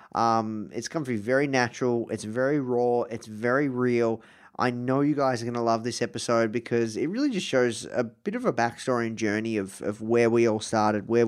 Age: 20-39